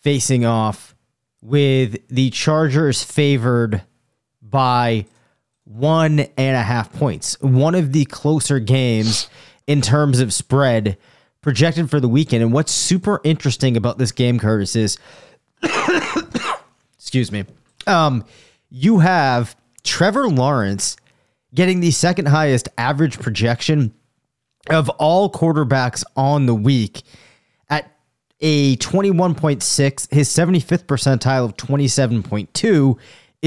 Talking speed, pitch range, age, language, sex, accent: 110 wpm, 120-150 Hz, 30-49, English, male, American